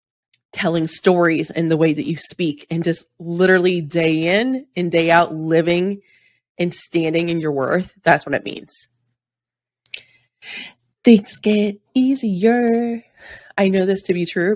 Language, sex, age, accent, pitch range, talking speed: English, female, 20-39, American, 155-195 Hz, 145 wpm